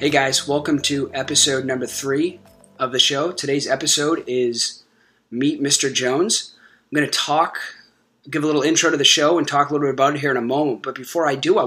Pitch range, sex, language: 125-145 Hz, male, English